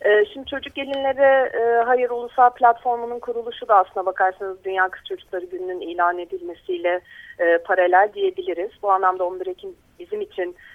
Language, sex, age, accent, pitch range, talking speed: Turkish, female, 40-59, native, 180-270 Hz, 145 wpm